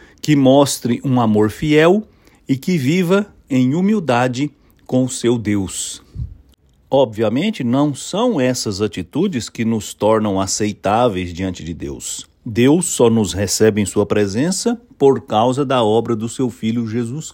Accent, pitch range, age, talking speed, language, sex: Brazilian, 105-130 Hz, 60-79, 140 wpm, English, male